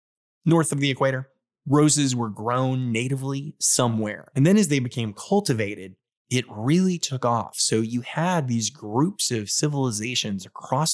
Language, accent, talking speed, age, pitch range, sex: English, American, 150 wpm, 20-39, 115-140 Hz, male